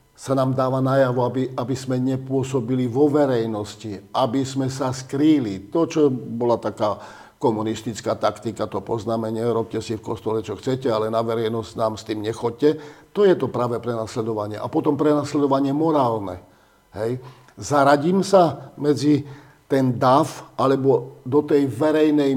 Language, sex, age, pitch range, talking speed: Slovak, male, 50-69, 115-140 Hz, 140 wpm